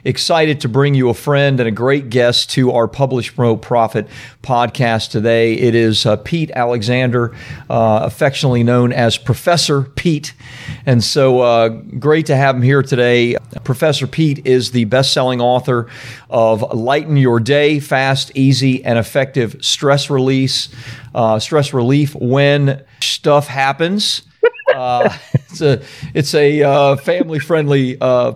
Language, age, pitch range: English, 40-59, 120-140 Hz